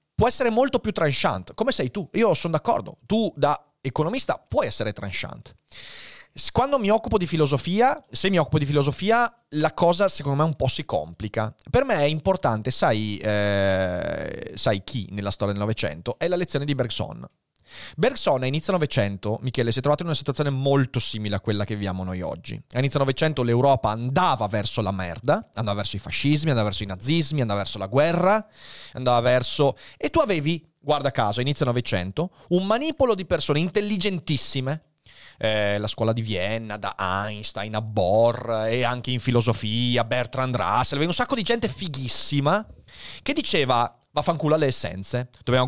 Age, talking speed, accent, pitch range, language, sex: 30-49, 175 wpm, native, 110-165 Hz, Italian, male